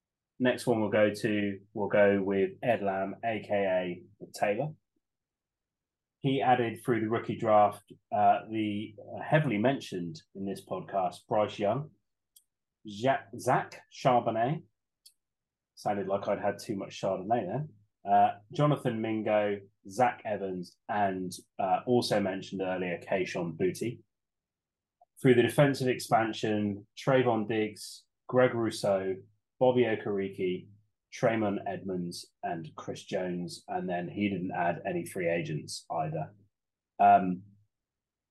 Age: 20-39